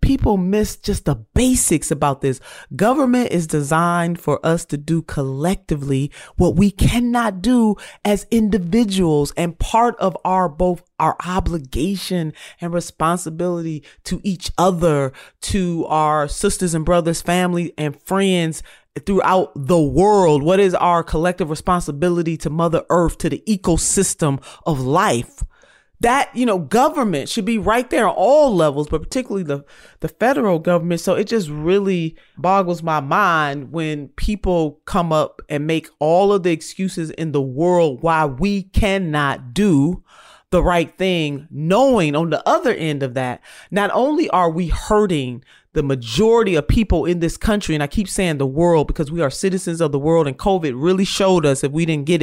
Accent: American